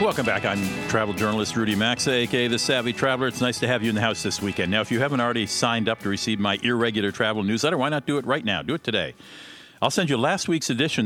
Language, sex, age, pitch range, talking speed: English, male, 50-69, 105-135 Hz, 265 wpm